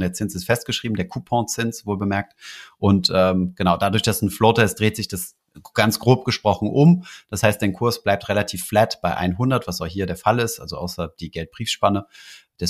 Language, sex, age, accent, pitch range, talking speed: German, male, 30-49, German, 95-110 Hz, 200 wpm